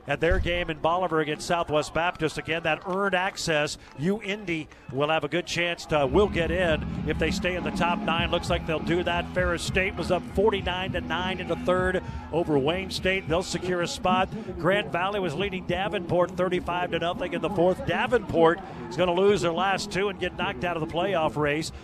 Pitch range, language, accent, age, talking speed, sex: 160-200 Hz, English, American, 50-69, 210 wpm, male